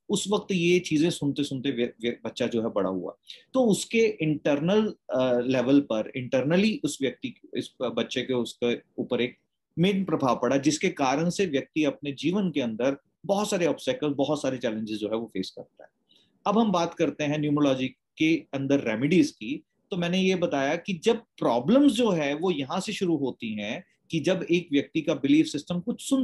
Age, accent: 30-49, native